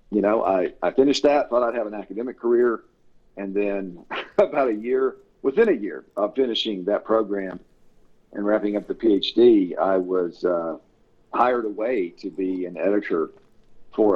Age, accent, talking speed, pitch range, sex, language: 50-69, American, 165 wpm, 100-150 Hz, male, English